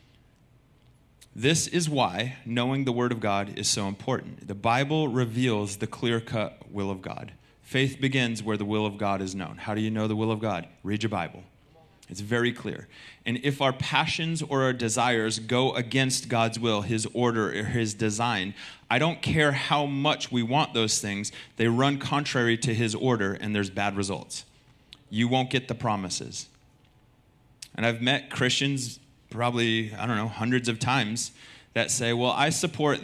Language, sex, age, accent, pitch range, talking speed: English, male, 30-49, American, 110-135 Hz, 180 wpm